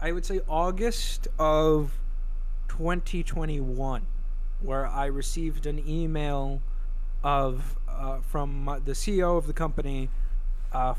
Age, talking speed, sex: 20-39, 110 wpm, male